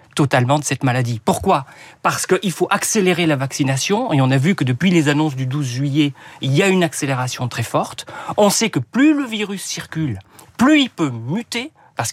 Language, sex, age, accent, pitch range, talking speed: French, male, 40-59, French, 140-200 Hz, 205 wpm